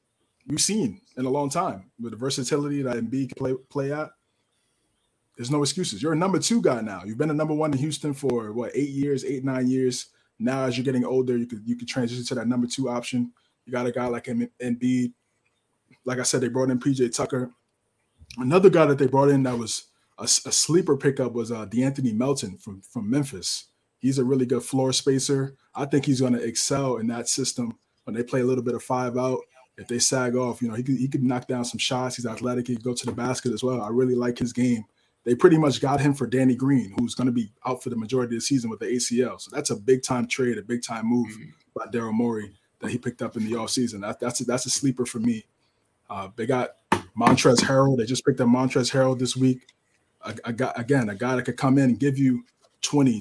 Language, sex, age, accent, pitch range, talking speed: English, male, 20-39, American, 120-135 Hz, 235 wpm